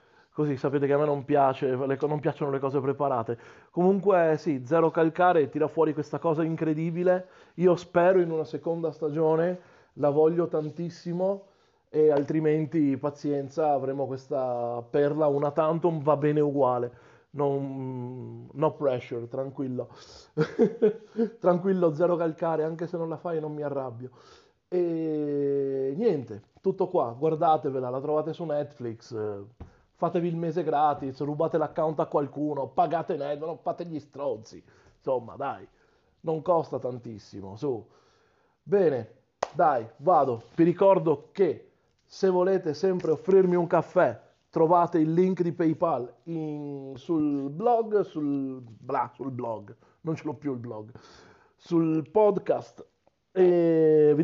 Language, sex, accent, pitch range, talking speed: Italian, male, native, 140-170 Hz, 125 wpm